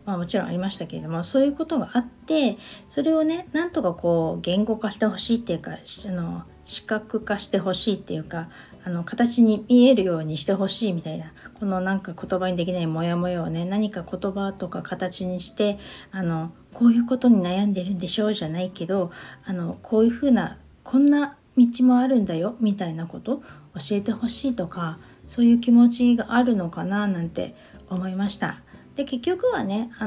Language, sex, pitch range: Japanese, female, 185-240 Hz